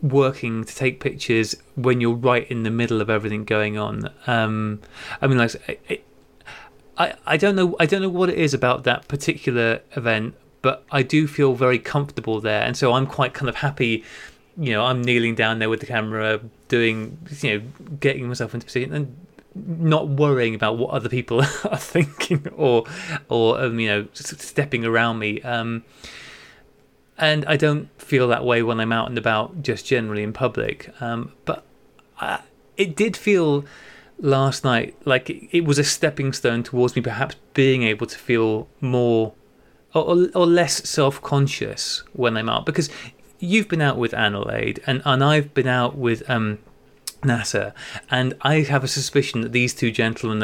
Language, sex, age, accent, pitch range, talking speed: English, male, 20-39, British, 115-145 Hz, 175 wpm